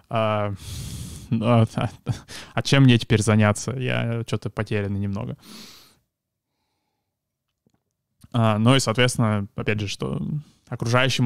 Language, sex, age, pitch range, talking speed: Russian, male, 20-39, 110-125 Hz, 95 wpm